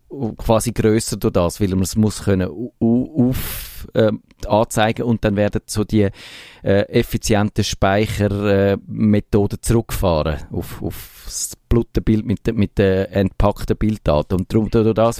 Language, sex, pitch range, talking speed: German, male, 95-115 Hz, 140 wpm